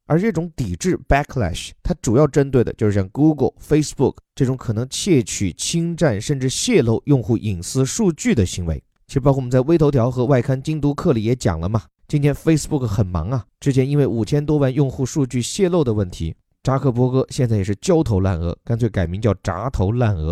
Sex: male